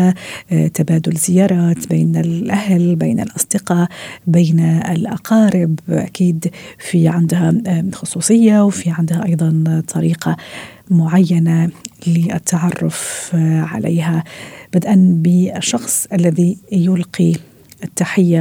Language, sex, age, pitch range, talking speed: Arabic, female, 50-69, 165-185 Hz, 80 wpm